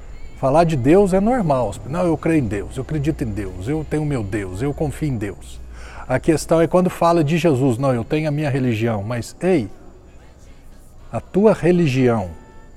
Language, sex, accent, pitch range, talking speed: Portuguese, male, Brazilian, 125-175 Hz, 190 wpm